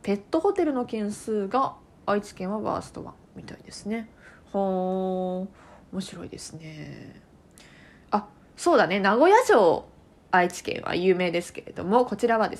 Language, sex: Japanese, female